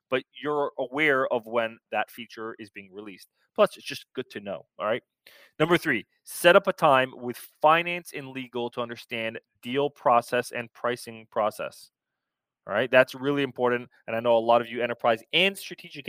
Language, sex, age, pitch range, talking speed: English, male, 20-39, 110-135 Hz, 185 wpm